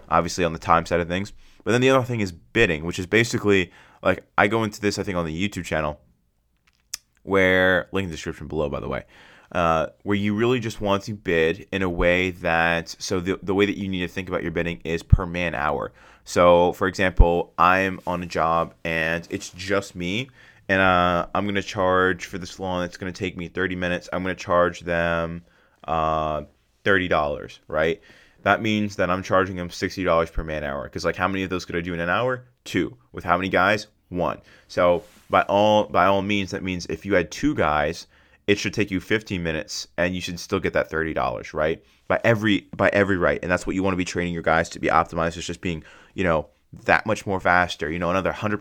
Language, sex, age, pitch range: English, male, 20-39, 85-100 Hz